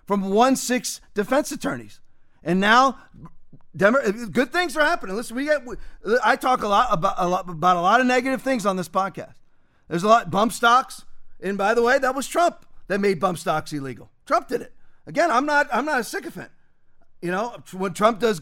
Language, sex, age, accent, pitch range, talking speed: English, male, 40-59, American, 185-250 Hz, 205 wpm